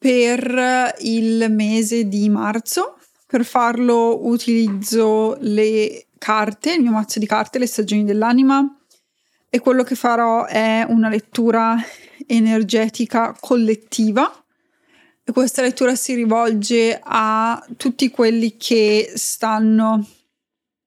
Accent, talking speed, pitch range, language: native, 105 wpm, 225-265 Hz, Italian